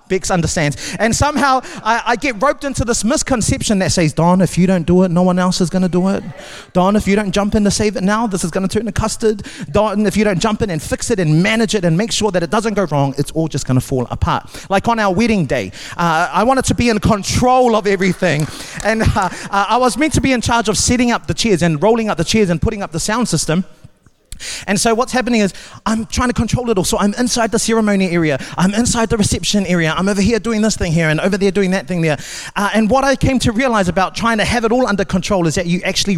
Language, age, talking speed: English, 30-49, 275 wpm